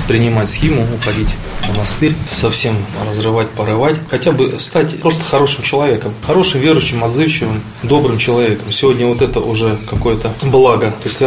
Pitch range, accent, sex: 110-130 Hz, native, male